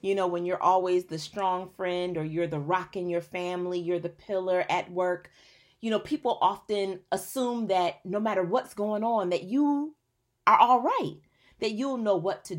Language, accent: English, American